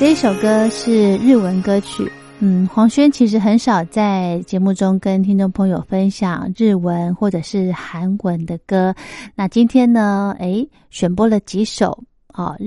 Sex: female